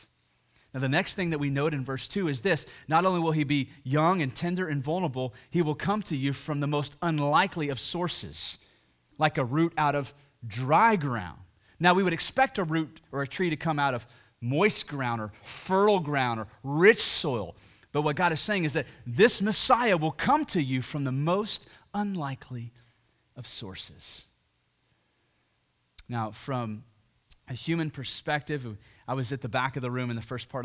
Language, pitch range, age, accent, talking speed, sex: English, 115-165 Hz, 30-49, American, 190 wpm, male